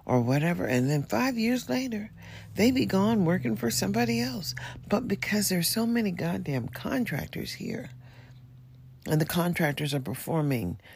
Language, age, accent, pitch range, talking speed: English, 40-59, American, 140-220 Hz, 150 wpm